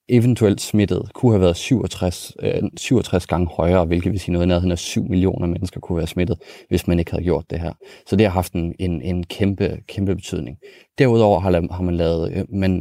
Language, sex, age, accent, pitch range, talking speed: Danish, male, 30-49, native, 85-105 Hz, 195 wpm